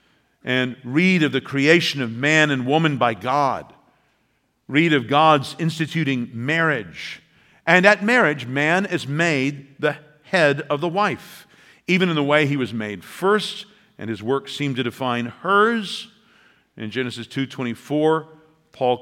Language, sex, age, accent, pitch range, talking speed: English, male, 50-69, American, 125-155 Hz, 150 wpm